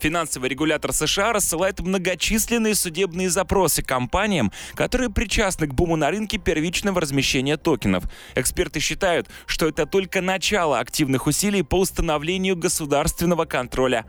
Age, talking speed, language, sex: 20-39, 125 wpm, Russian, male